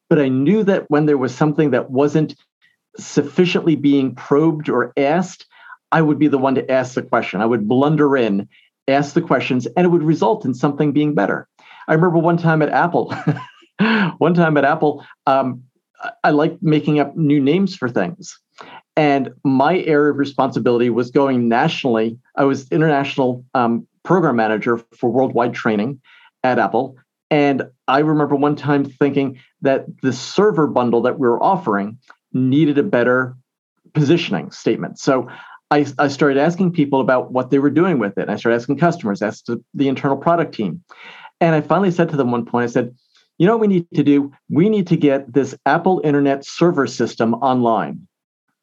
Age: 50-69